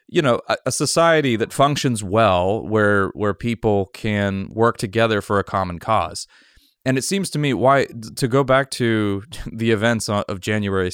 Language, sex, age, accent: English, male, 30-49, American